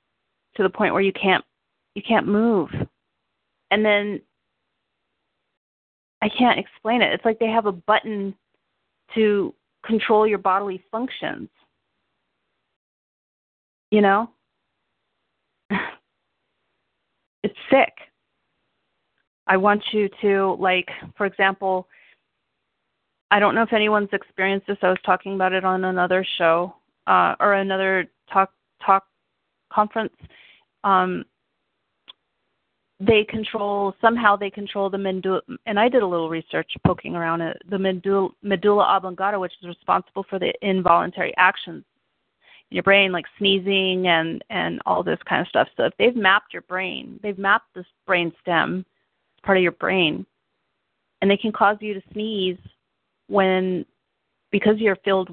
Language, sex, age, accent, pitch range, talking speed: English, female, 30-49, American, 185-210 Hz, 135 wpm